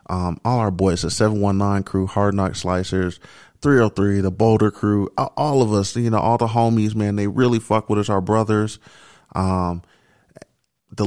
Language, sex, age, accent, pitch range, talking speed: English, male, 30-49, American, 90-105 Hz, 195 wpm